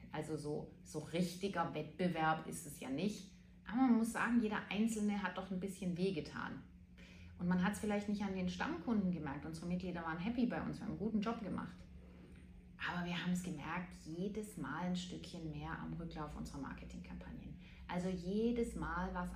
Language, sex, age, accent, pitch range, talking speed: German, female, 30-49, German, 165-210 Hz, 190 wpm